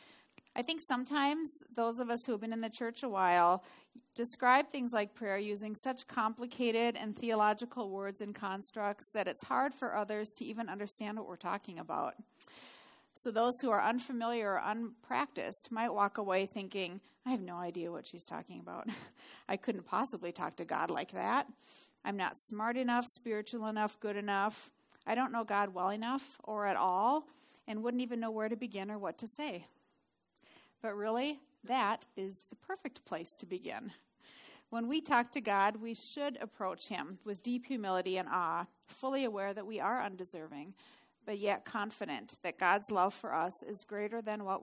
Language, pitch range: English, 200-245 Hz